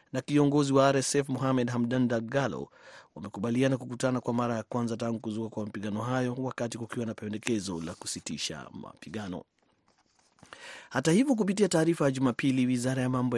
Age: 30-49